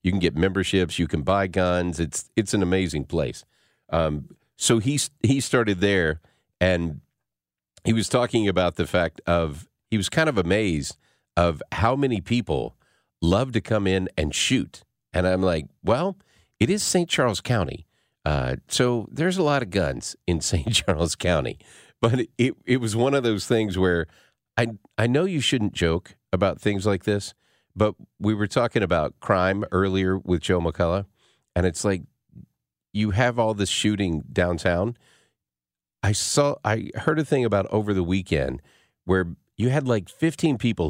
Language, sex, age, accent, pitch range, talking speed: English, male, 50-69, American, 85-115 Hz, 170 wpm